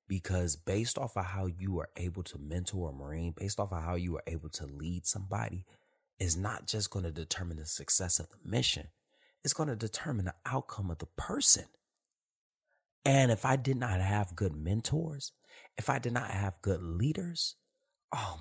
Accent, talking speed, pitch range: American, 190 wpm, 80-115 Hz